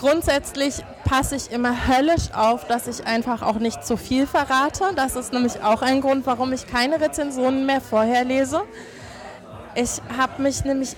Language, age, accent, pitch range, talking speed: German, 20-39, German, 225-265 Hz, 170 wpm